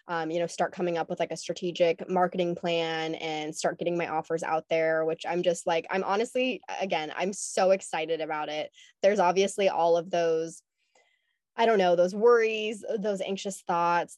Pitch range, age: 170-190 Hz, 20-39